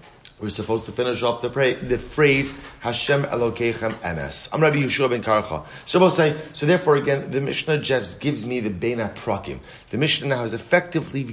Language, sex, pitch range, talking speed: English, male, 115-145 Hz, 180 wpm